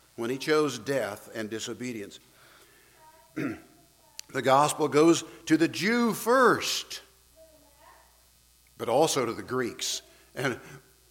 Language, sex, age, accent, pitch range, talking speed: English, male, 60-79, American, 120-155 Hz, 105 wpm